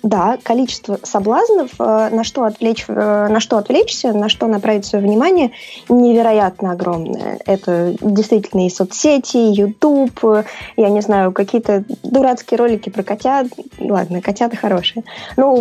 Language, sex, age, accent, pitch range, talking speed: Russian, female, 20-39, native, 200-255 Hz, 125 wpm